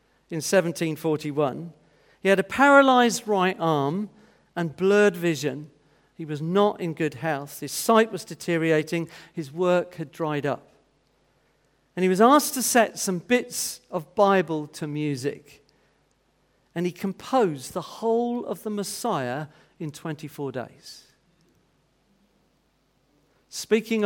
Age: 50-69